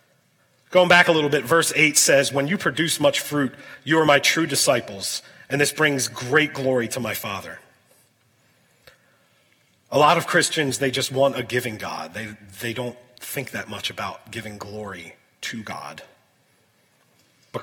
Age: 30-49